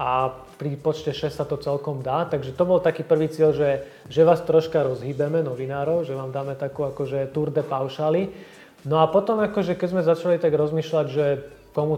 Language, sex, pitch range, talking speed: Slovak, male, 140-160 Hz, 195 wpm